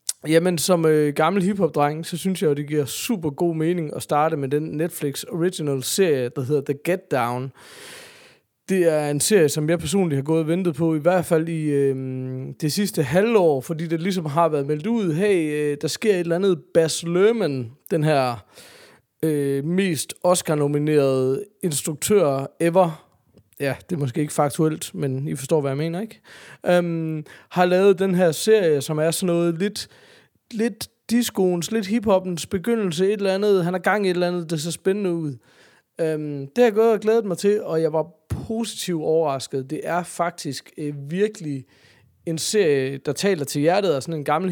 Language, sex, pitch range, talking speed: Danish, male, 145-185 Hz, 190 wpm